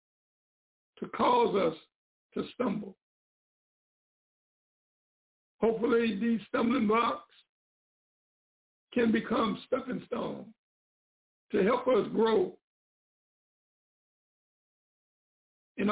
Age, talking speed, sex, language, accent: 60-79, 70 wpm, male, English, American